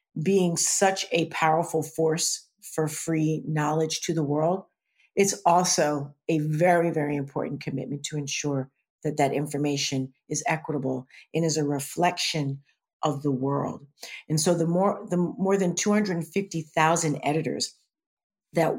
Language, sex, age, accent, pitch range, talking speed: English, female, 50-69, American, 145-165 Hz, 145 wpm